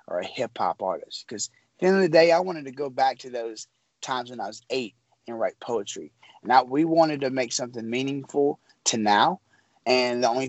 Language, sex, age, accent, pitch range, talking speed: English, male, 30-49, American, 115-140 Hz, 215 wpm